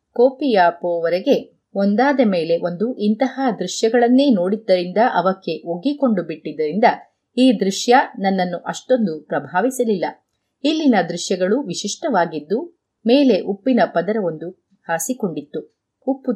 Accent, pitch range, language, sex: native, 170-245 Hz, Kannada, female